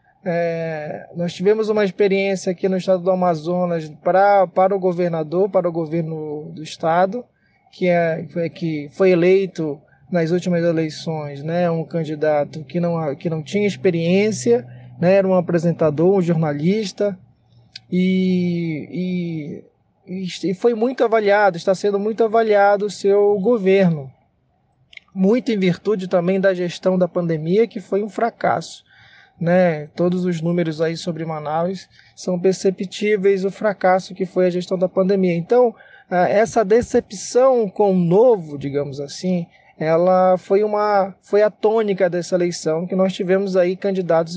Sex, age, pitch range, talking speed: male, 20-39, 170-200 Hz, 135 wpm